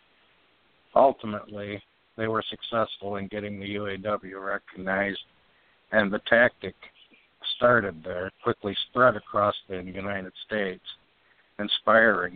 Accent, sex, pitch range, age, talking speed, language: American, male, 95-110 Hz, 60-79, 100 wpm, English